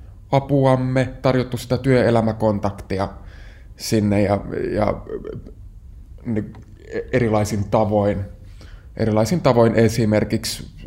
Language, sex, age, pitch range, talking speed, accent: Finnish, male, 20-39, 100-115 Hz, 65 wpm, native